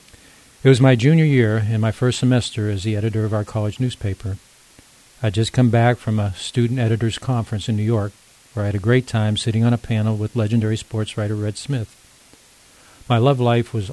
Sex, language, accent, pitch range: male, English, American, 105-125 Hz